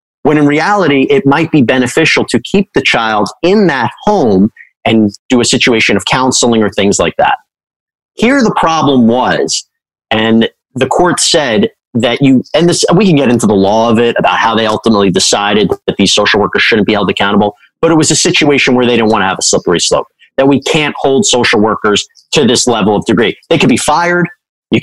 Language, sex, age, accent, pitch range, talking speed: English, male, 30-49, American, 125-170 Hz, 210 wpm